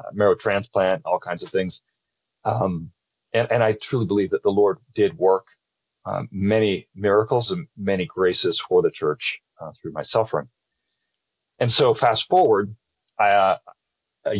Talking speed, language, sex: 155 wpm, English, male